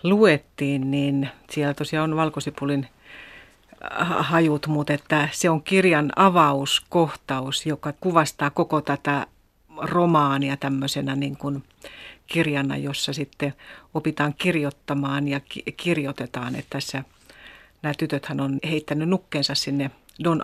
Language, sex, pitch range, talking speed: Finnish, female, 145-165 Hz, 110 wpm